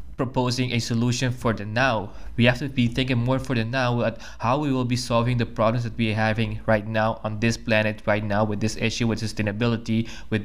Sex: male